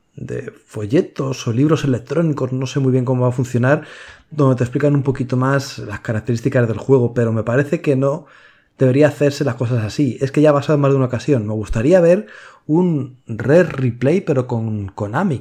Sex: male